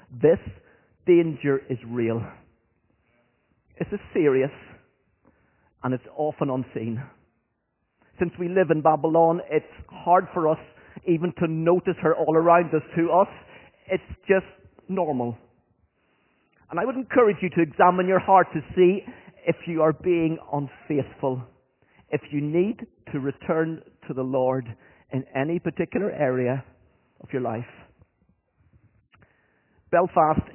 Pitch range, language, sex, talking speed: 145-180 Hz, English, male, 125 wpm